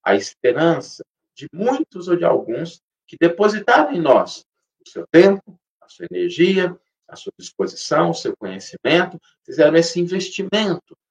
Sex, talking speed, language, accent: male, 140 wpm, Portuguese, Brazilian